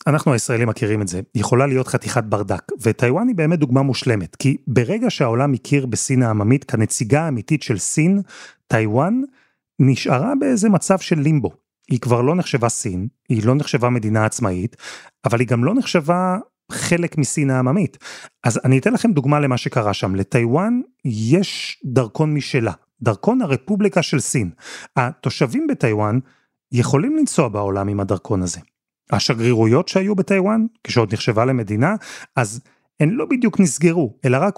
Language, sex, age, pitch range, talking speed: Hebrew, male, 30-49, 120-170 Hz, 150 wpm